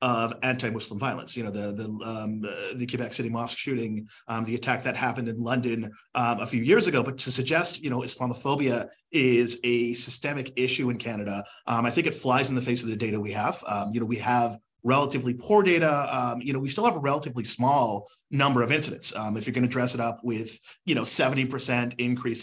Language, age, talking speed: English, 30-49, 215 wpm